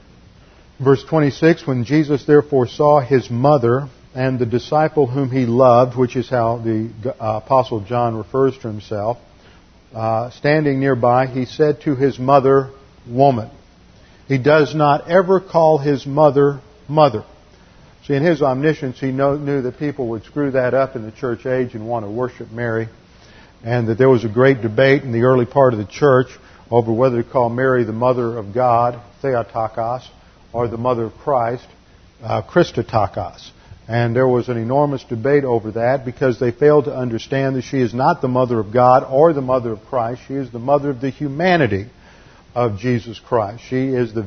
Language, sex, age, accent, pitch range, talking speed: English, male, 50-69, American, 120-140 Hz, 180 wpm